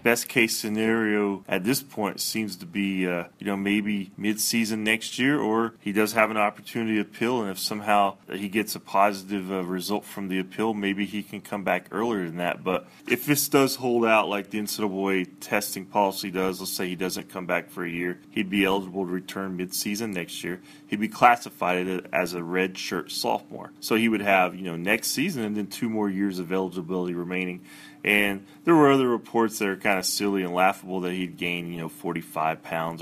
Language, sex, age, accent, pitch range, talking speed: English, male, 20-39, American, 95-110 Hz, 220 wpm